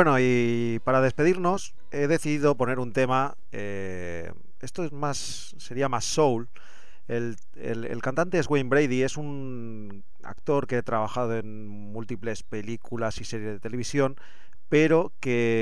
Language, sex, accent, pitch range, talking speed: English, male, Spanish, 100-130 Hz, 145 wpm